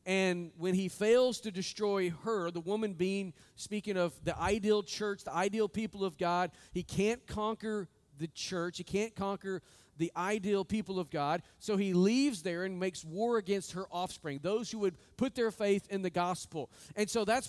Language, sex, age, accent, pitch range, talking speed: English, male, 40-59, American, 180-215 Hz, 190 wpm